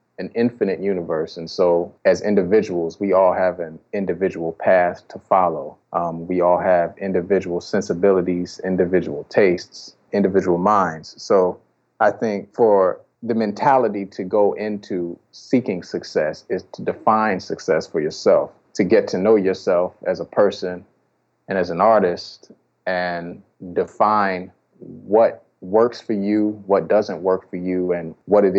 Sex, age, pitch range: male, 30-49, 90-100 Hz